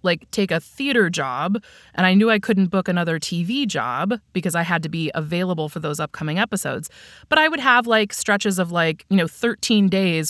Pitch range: 170-215 Hz